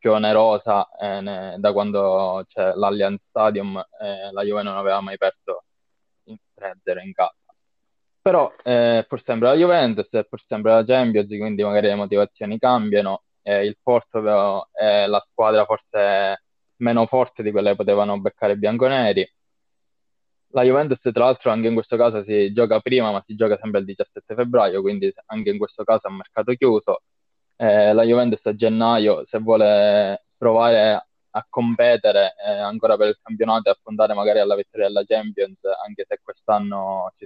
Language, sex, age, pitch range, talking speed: Italian, male, 20-39, 105-125 Hz, 175 wpm